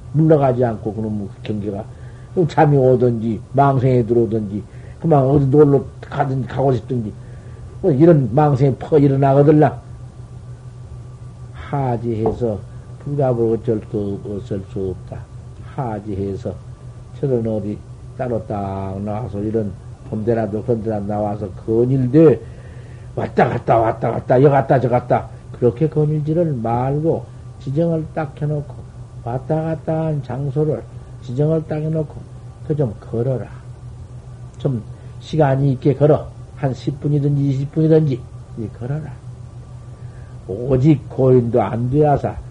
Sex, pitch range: male, 120-140 Hz